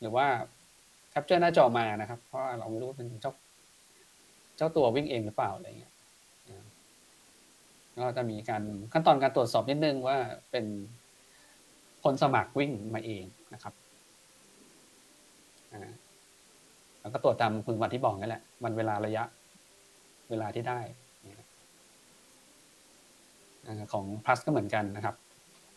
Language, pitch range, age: Thai, 110-140 Hz, 20-39